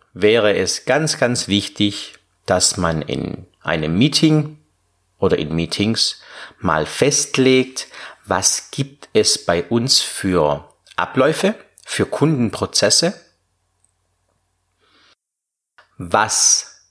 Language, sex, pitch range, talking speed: German, male, 90-130 Hz, 90 wpm